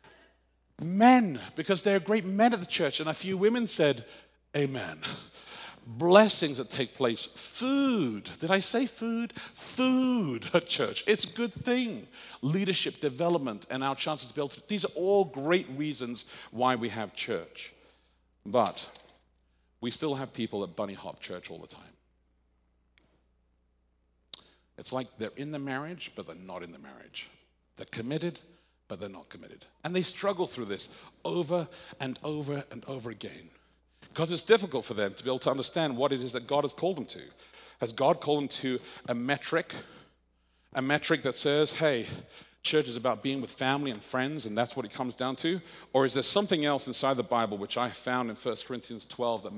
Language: English